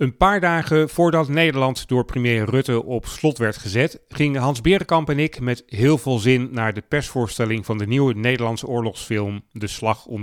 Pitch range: 110-145 Hz